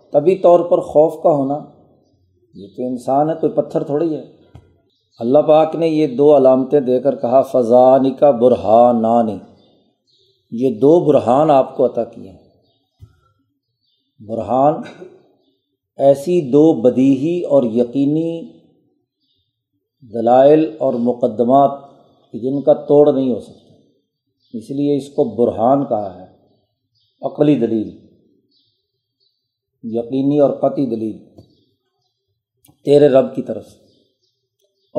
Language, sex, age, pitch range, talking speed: Urdu, male, 50-69, 120-145 Hz, 115 wpm